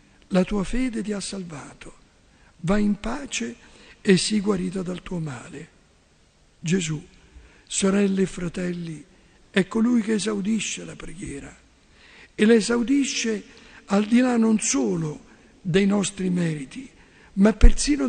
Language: Italian